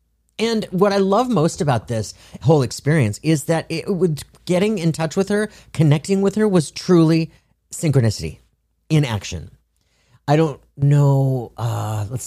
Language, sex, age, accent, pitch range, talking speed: English, male, 40-59, American, 110-160 Hz, 150 wpm